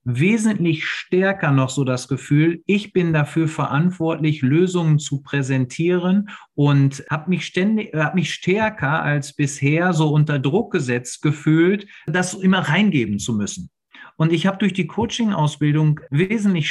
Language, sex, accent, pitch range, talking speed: German, male, German, 155-200 Hz, 140 wpm